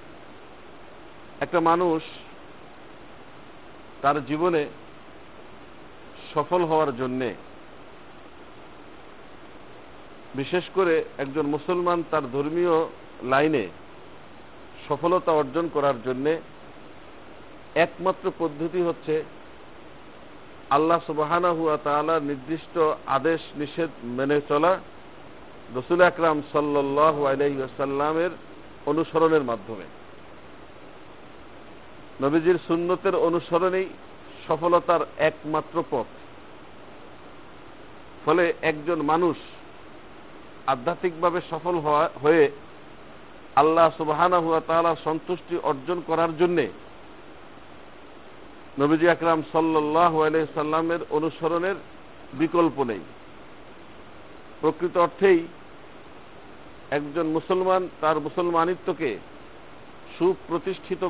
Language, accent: Bengali, native